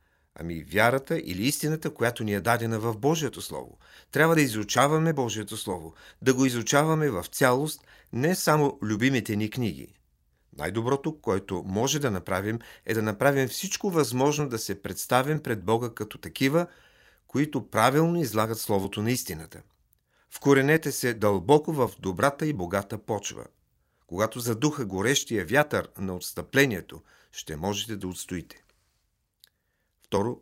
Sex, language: male, Bulgarian